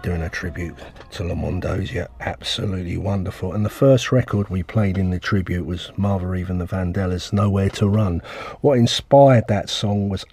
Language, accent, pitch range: English, British, 95-110 Hz